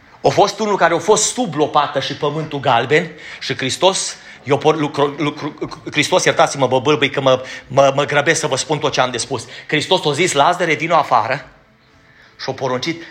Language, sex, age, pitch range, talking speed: Romanian, male, 30-49, 135-175 Hz, 170 wpm